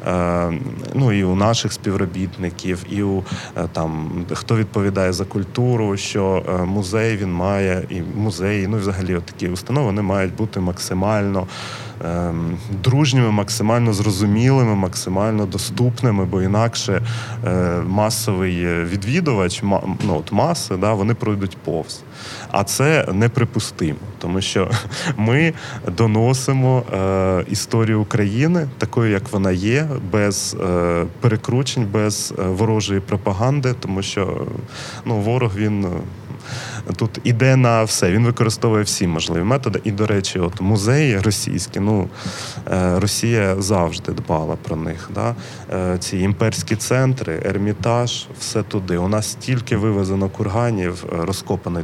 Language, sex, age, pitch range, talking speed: Ukrainian, male, 30-49, 95-115 Hz, 115 wpm